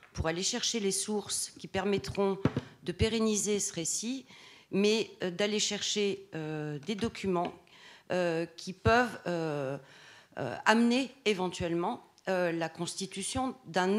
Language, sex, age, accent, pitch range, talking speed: French, female, 40-59, French, 160-205 Hz, 120 wpm